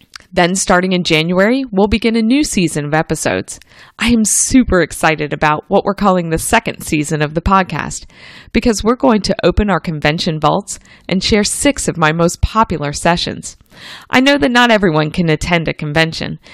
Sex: female